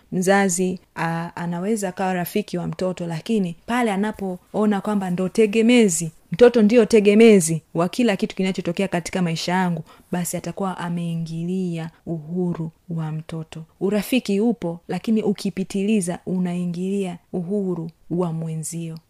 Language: Swahili